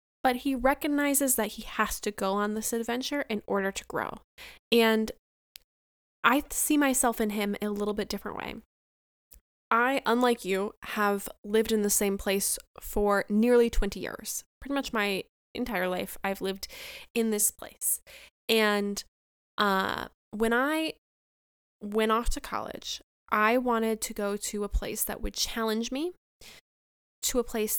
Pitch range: 205-250 Hz